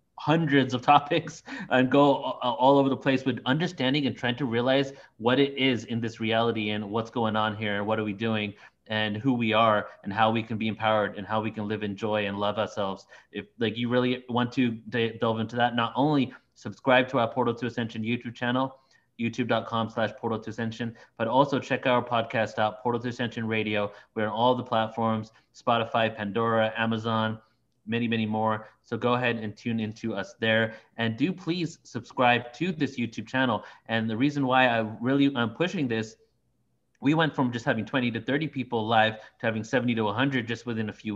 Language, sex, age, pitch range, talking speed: English, male, 30-49, 110-130 Hz, 205 wpm